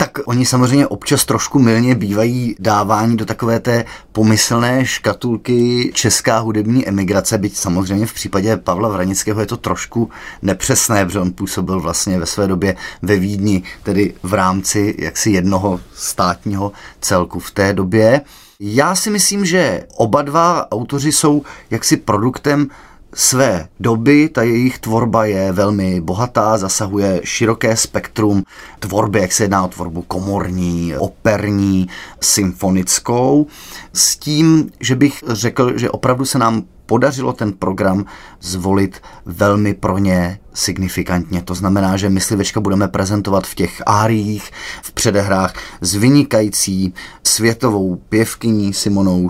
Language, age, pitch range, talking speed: Czech, 30-49, 95-115 Hz, 130 wpm